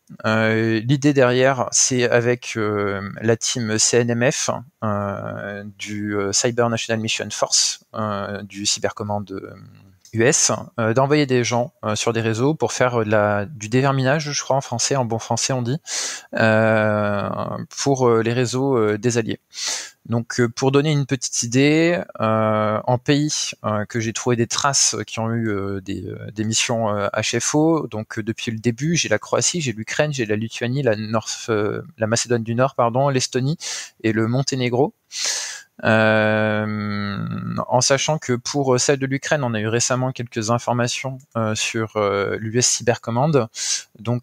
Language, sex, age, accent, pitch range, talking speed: French, male, 20-39, French, 110-130 Hz, 165 wpm